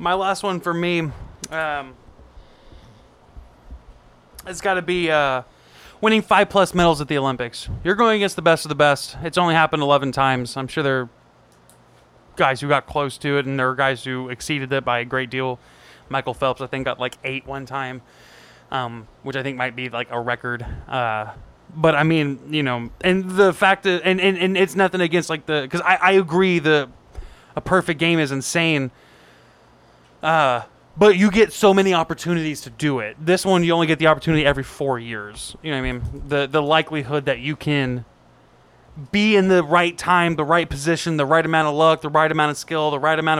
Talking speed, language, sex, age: 210 wpm, English, male, 20-39